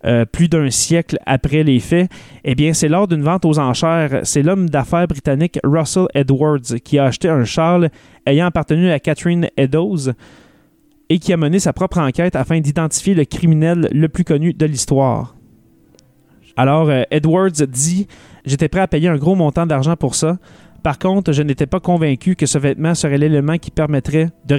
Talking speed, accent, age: 185 wpm, Canadian, 30-49